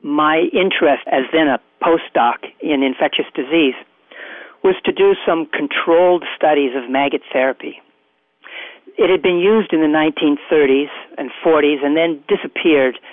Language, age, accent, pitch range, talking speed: English, 50-69, American, 140-175 Hz, 135 wpm